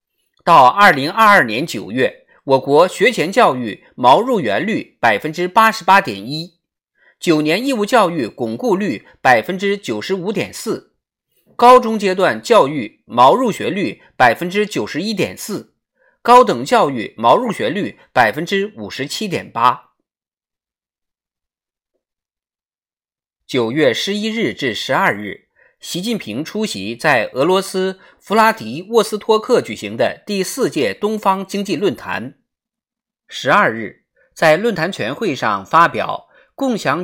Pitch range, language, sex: 170-220 Hz, Chinese, male